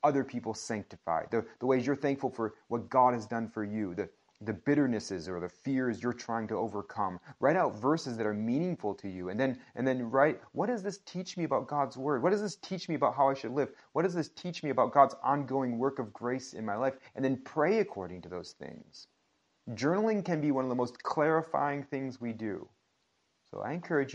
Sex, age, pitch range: male, 30-49, 110-150 Hz